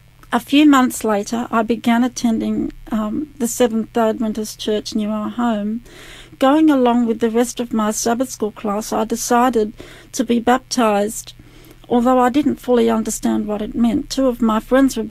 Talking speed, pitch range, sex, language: 175 wpm, 220-245 Hz, female, English